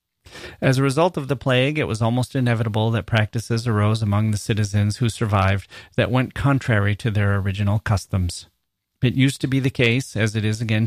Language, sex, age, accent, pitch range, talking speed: English, male, 30-49, American, 105-125 Hz, 195 wpm